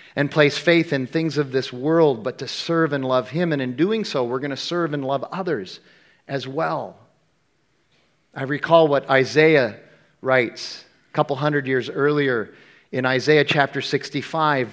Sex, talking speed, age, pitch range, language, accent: male, 165 wpm, 40-59, 130-160 Hz, English, American